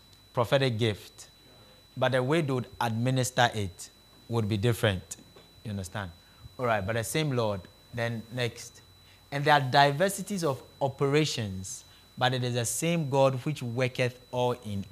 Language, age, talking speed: English, 30-49, 150 wpm